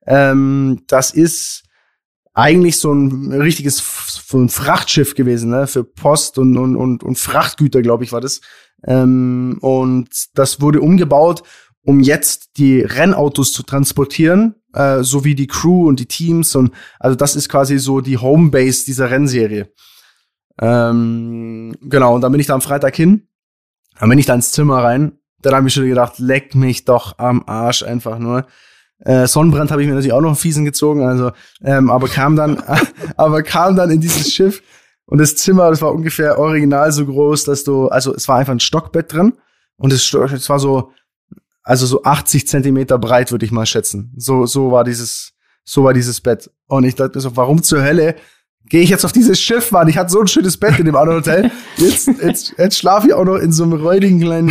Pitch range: 130-155 Hz